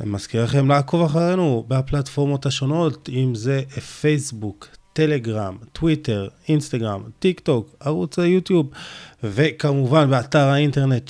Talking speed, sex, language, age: 110 wpm, male, Hebrew, 20-39